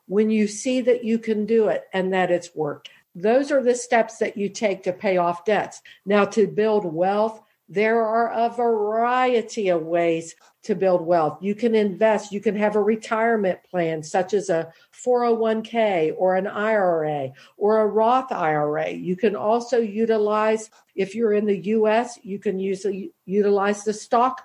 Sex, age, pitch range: female, 50-69, 190-230 Hz